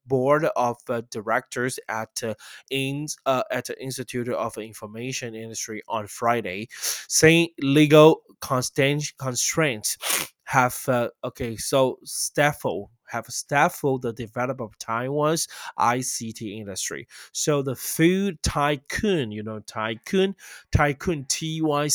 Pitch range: 115-140 Hz